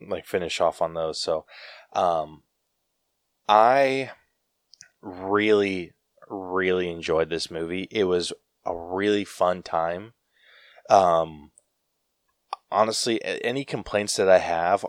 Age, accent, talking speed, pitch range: 20-39, American, 105 wpm, 90-115 Hz